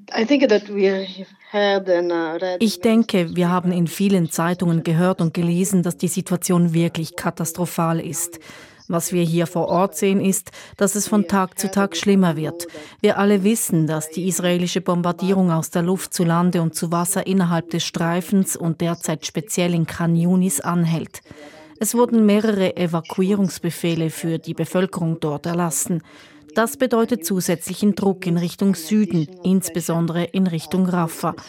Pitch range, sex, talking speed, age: 165-195 Hz, female, 145 wpm, 30-49